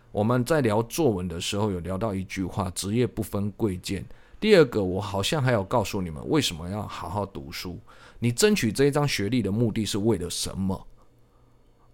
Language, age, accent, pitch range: Chinese, 20-39, native, 100-130 Hz